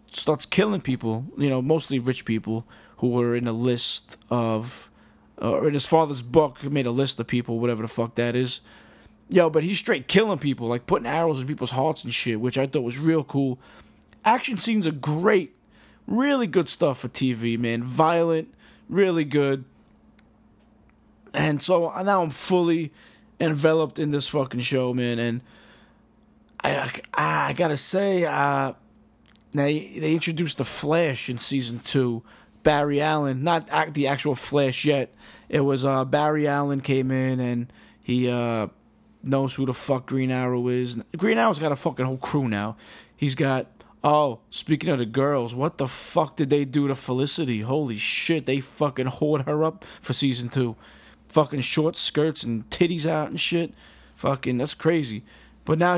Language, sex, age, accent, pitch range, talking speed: English, male, 20-39, American, 125-160 Hz, 170 wpm